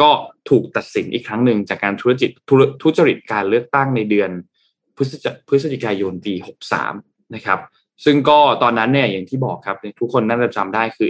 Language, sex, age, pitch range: Thai, male, 20-39, 105-130 Hz